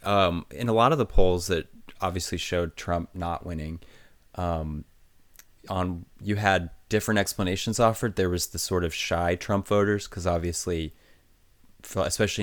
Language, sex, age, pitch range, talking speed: English, male, 30-49, 85-100 Hz, 150 wpm